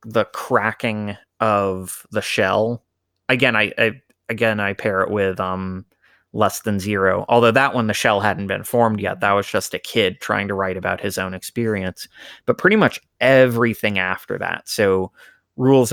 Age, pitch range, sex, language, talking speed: 20-39, 95-115 Hz, male, English, 175 wpm